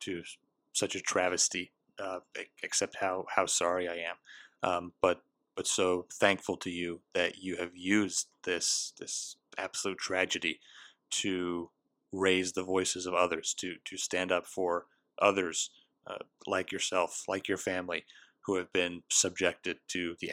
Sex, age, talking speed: male, 30-49, 150 wpm